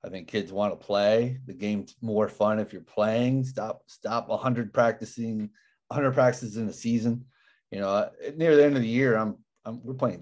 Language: English